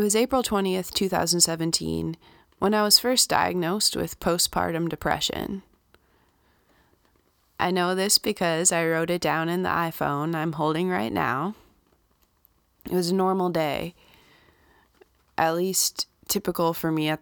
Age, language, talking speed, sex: 20-39, English, 135 wpm, female